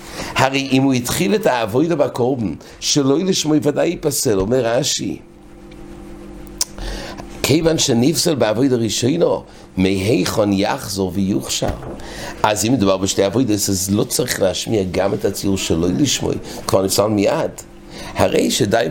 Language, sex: English, male